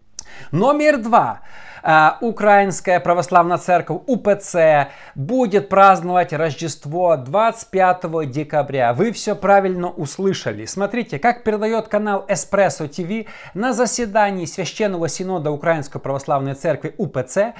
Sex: male